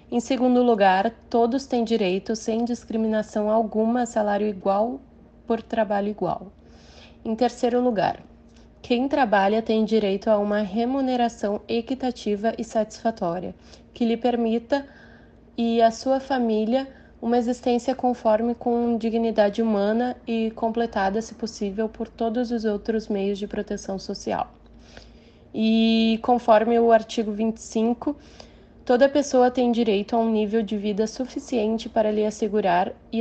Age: 20-39